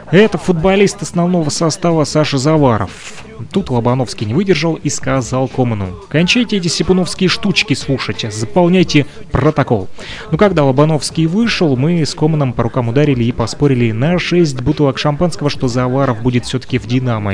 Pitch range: 120-150 Hz